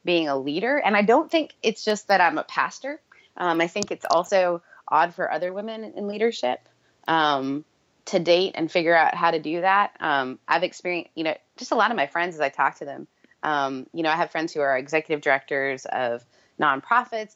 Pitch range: 140-195 Hz